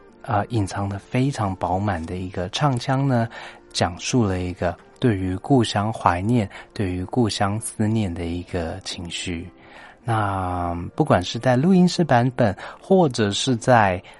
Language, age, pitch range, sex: Chinese, 30-49, 95-120 Hz, male